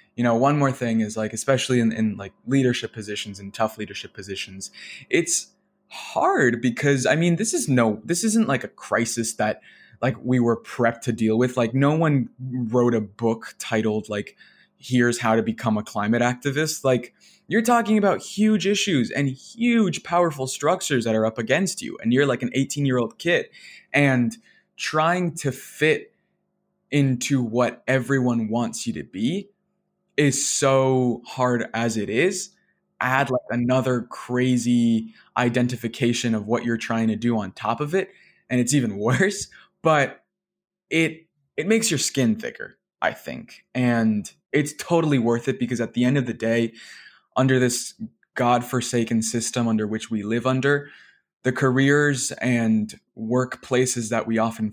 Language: English